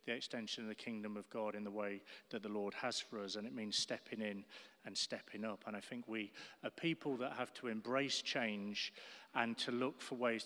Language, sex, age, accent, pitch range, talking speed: English, male, 30-49, British, 110-140 Hz, 230 wpm